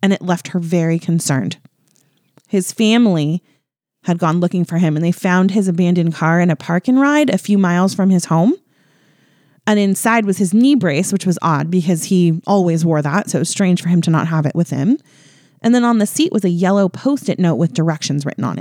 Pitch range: 165-205 Hz